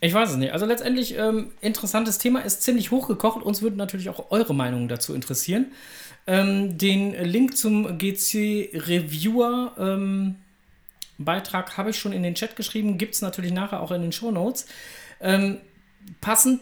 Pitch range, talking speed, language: 135-200 Hz, 160 wpm, German